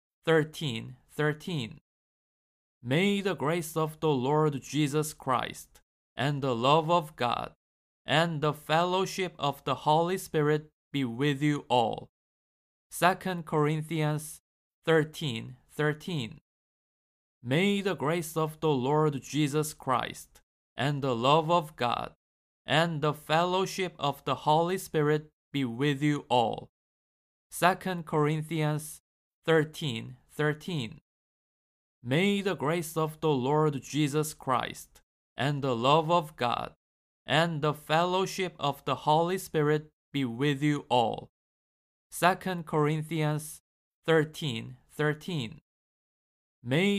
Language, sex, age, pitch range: Korean, male, 20-39, 130-160 Hz